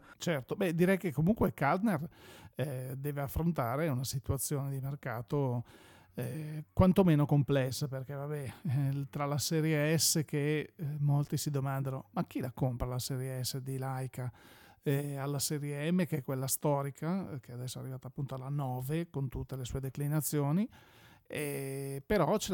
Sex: male